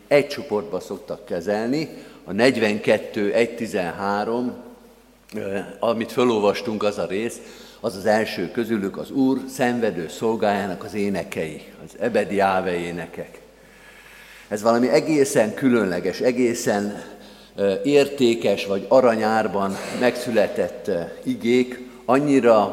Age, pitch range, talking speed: 50-69, 105-130 Hz, 95 wpm